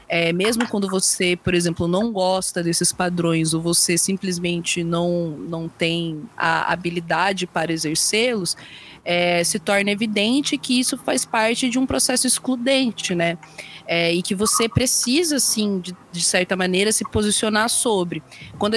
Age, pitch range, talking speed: 20-39, 175-205 Hz, 140 wpm